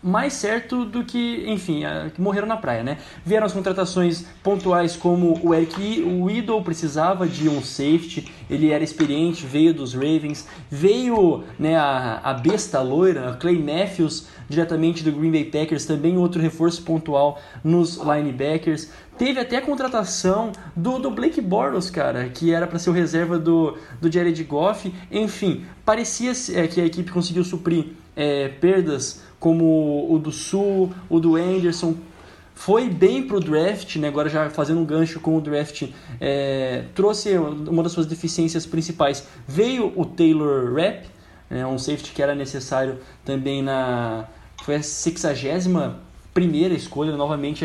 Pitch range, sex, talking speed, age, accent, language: 145-185 Hz, male, 150 wpm, 20-39, Brazilian, Portuguese